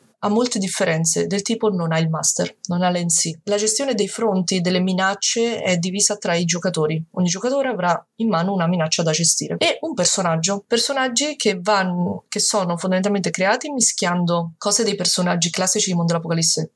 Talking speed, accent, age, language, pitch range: 180 wpm, native, 20-39, Italian, 170-210 Hz